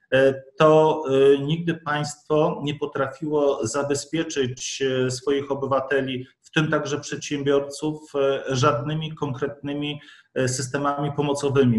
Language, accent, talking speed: Polish, native, 80 wpm